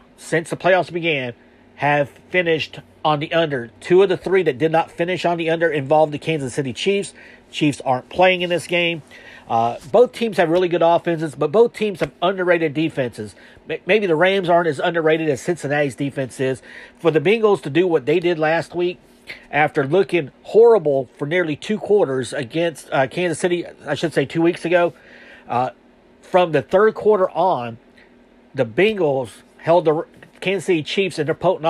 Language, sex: English, male